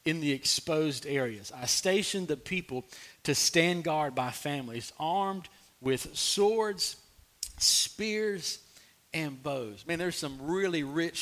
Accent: American